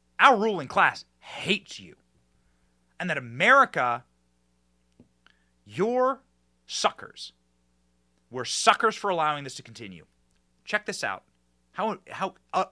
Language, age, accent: English, 30-49, American